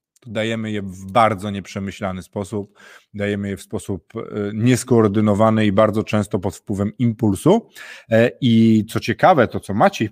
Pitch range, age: 105-140 Hz, 30-49